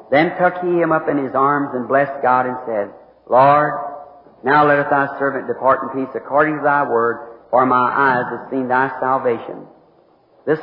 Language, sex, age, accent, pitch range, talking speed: English, male, 50-69, American, 130-160 Hz, 185 wpm